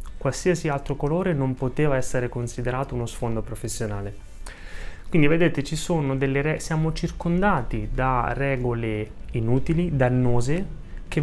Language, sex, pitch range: Italian, male, 110-150 Hz